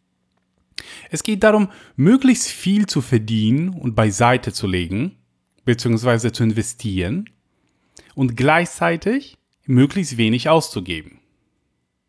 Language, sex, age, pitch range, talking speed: German, male, 30-49, 105-145 Hz, 95 wpm